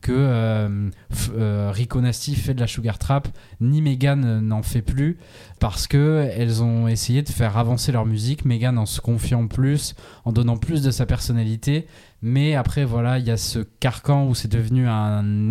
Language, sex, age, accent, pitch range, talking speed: French, male, 20-39, French, 115-135 Hz, 190 wpm